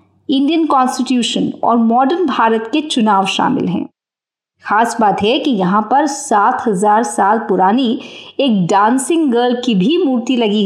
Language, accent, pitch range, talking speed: Hindi, native, 225-290 Hz, 140 wpm